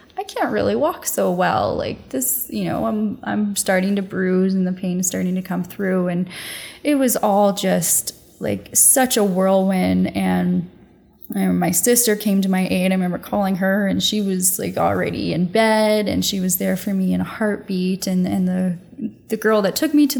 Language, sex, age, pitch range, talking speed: English, female, 10-29, 190-235 Hz, 205 wpm